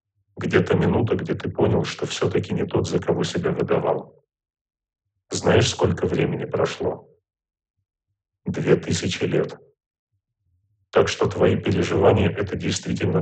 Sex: male